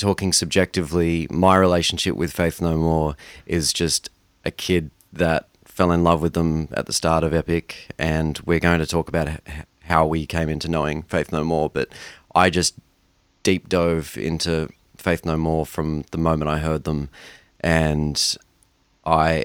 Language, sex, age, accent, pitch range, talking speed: English, male, 30-49, Australian, 75-85 Hz, 165 wpm